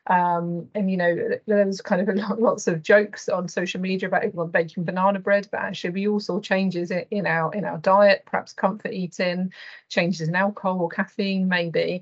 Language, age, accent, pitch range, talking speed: English, 30-49, British, 175-205 Hz, 205 wpm